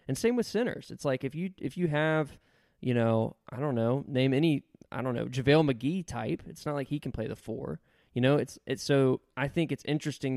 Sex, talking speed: male, 235 wpm